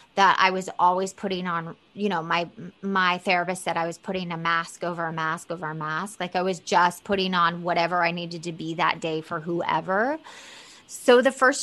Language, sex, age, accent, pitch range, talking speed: English, female, 20-39, American, 180-210 Hz, 210 wpm